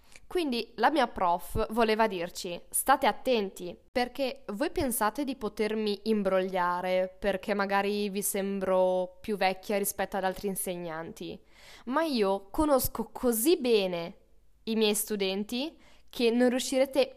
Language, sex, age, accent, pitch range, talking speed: Italian, female, 10-29, native, 195-265 Hz, 120 wpm